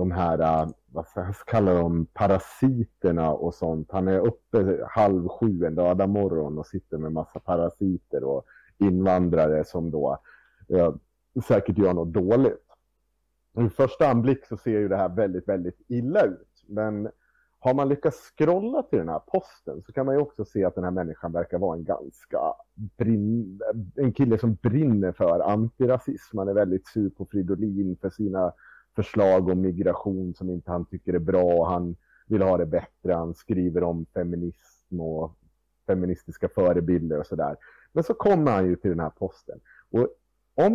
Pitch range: 90-115 Hz